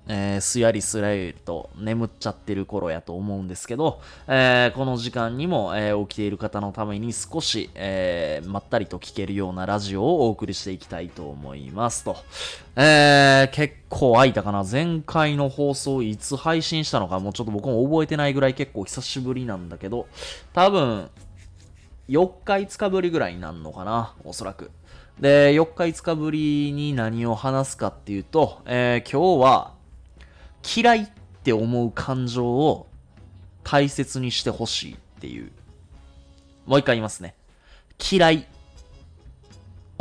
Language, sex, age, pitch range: Japanese, male, 20-39, 95-135 Hz